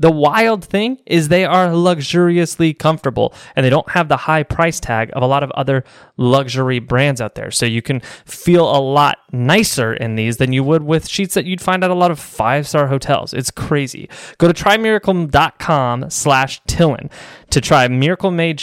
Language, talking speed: English, 190 wpm